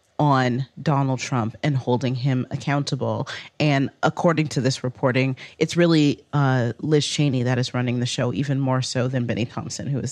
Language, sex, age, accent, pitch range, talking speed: English, female, 30-49, American, 130-165 Hz, 180 wpm